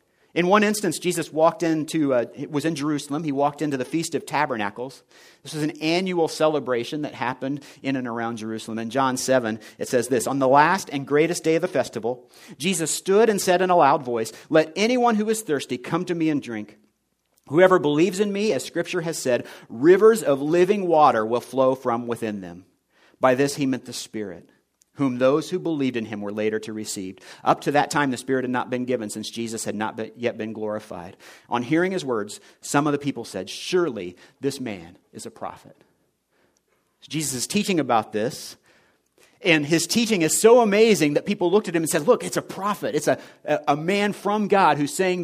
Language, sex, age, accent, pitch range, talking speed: English, male, 50-69, American, 125-180 Hz, 205 wpm